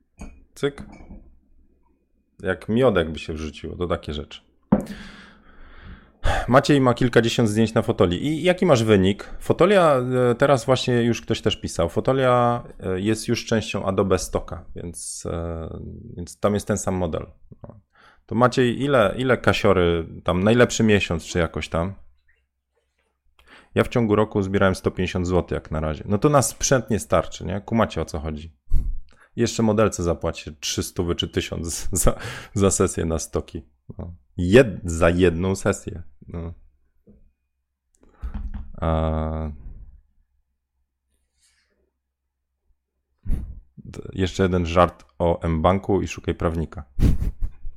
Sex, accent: male, native